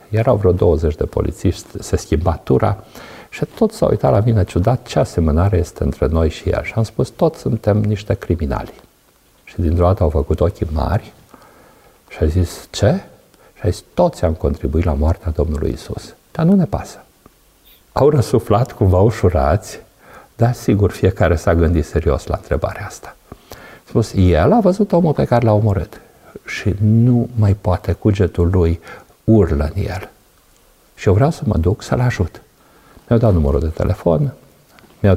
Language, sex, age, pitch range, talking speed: Romanian, male, 50-69, 85-120 Hz, 165 wpm